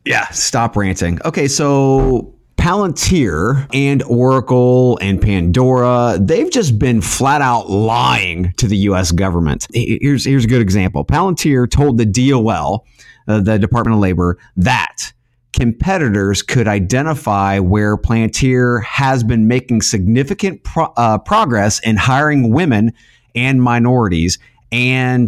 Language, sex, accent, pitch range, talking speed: English, male, American, 105-140 Hz, 125 wpm